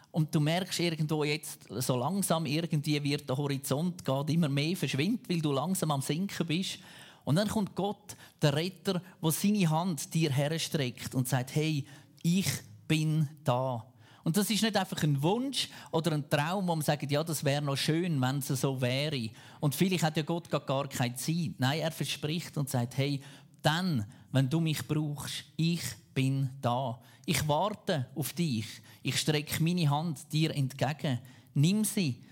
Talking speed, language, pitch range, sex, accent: 175 wpm, German, 130-165 Hz, male, Austrian